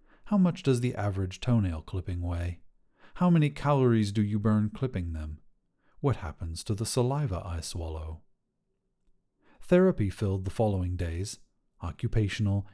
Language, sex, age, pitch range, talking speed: English, male, 40-59, 95-140 Hz, 125 wpm